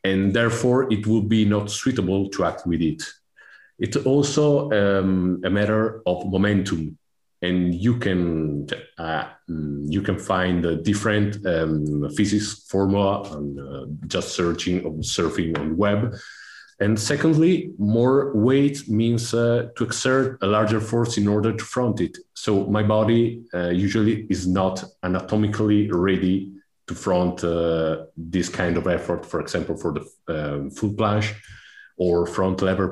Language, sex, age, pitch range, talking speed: English, male, 40-59, 90-110 Hz, 145 wpm